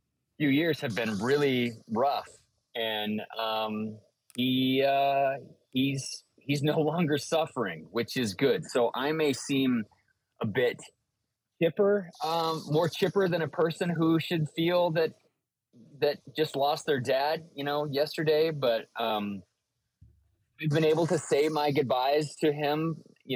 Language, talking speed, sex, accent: English, 140 wpm, male, American